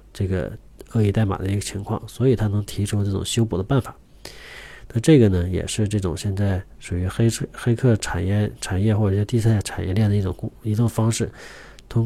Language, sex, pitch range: Chinese, male, 100-125 Hz